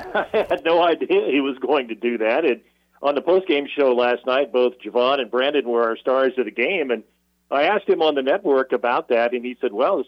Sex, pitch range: male, 125-175 Hz